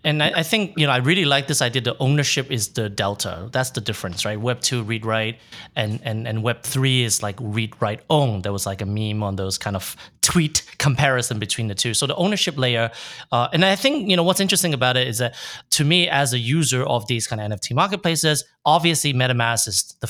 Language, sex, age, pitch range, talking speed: English, male, 30-49, 120-155 Hz, 225 wpm